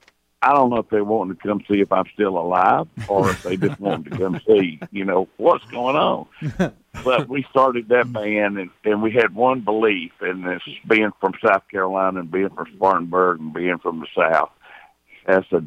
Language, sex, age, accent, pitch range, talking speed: English, male, 60-79, American, 90-105 Hz, 205 wpm